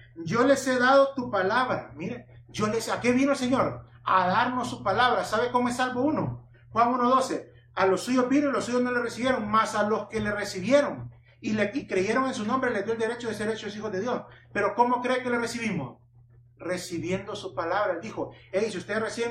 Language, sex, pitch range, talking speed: English, male, 180-240 Hz, 225 wpm